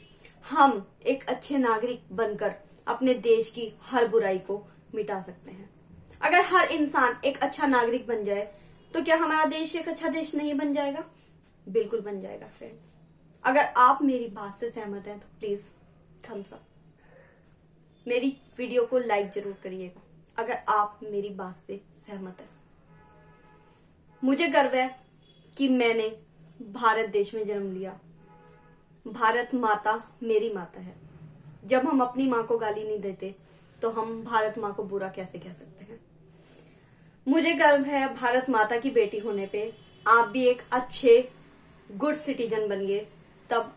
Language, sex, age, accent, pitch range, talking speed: Hindi, female, 20-39, native, 190-245 Hz, 150 wpm